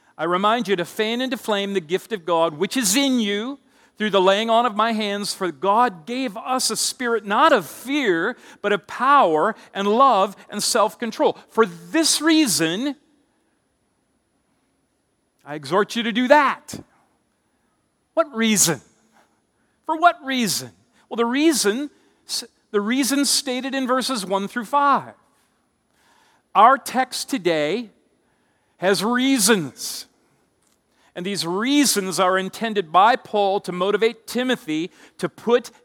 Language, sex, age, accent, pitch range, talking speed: English, male, 50-69, American, 185-250 Hz, 135 wpm